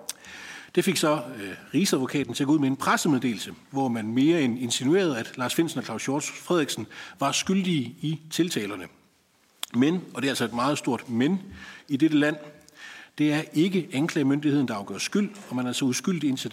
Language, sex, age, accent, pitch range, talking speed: Danish, male, 60-79, native, 120-160 Hz, 195 wpm